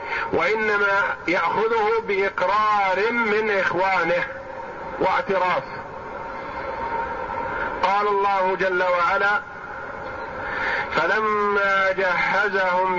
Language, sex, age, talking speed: Arabic, male, 50-69, 55 wpm